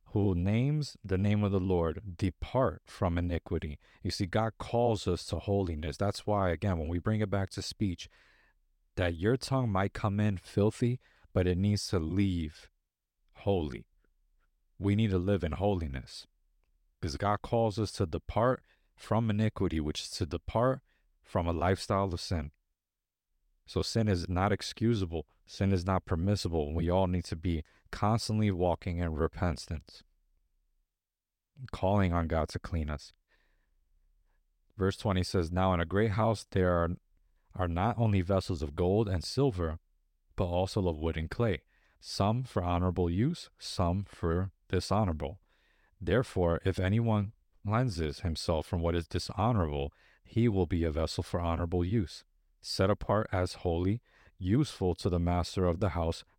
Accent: American